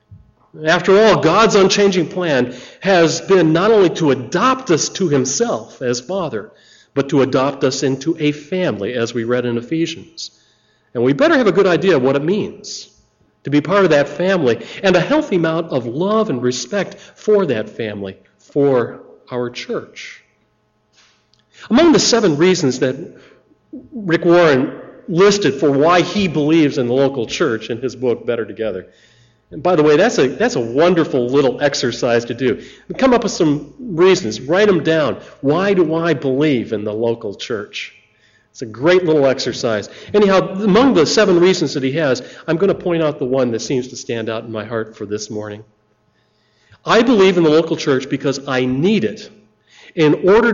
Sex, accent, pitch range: male, American, 115-180 Hz